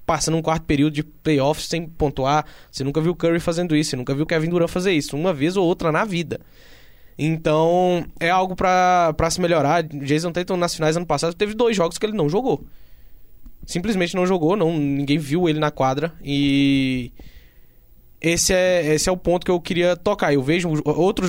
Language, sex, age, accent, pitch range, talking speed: Portuguese, male, 10-29, Brazilian, 140-175 Hz, 195 wpm